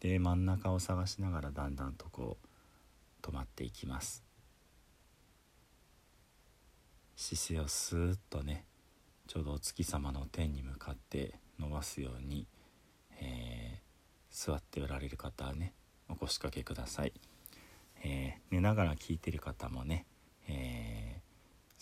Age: 40-59